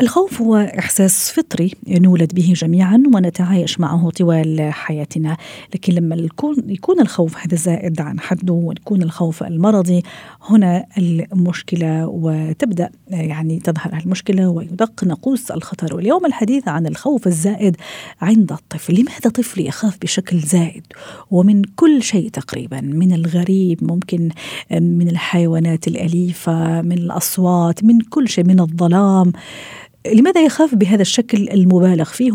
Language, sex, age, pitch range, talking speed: Arabic, female, 40-59, 170-215 Hz, 120 wpm